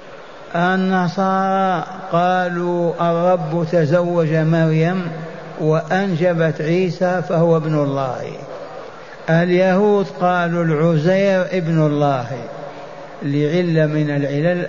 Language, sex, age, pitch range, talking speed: Arabic, male, 60-79, 150-185 Hz, 75 wpm